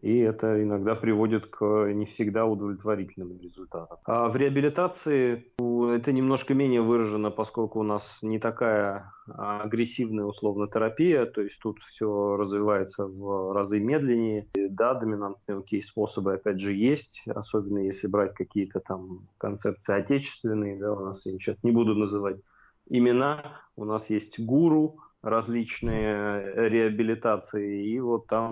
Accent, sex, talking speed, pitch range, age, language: native, male, 130 wpm, 100-115 Hz, 30-49, Russian